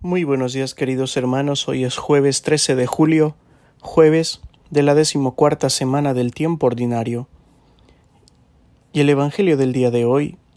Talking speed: 150 wpm